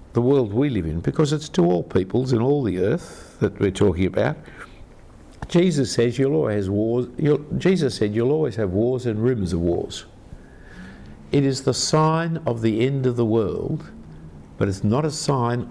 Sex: male